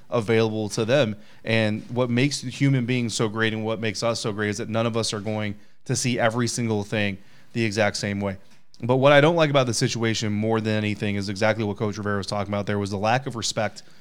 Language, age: English, 20-39